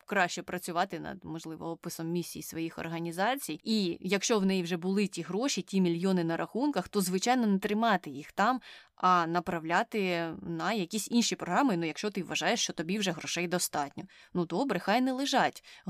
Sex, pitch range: female, 170-215 Hz